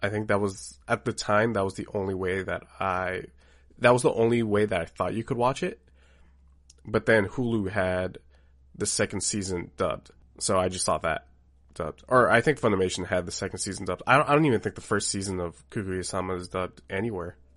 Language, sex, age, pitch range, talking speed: English, male, 20-39, 70-105 Hz, 210 wpm